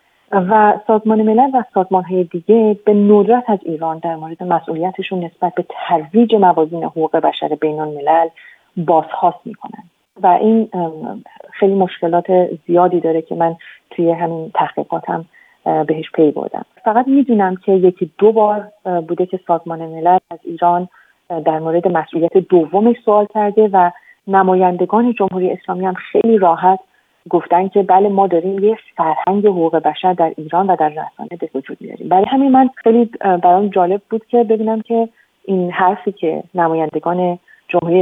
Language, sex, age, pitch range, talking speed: Persian, female, 40-59, 165-205 Hz, 150 wpm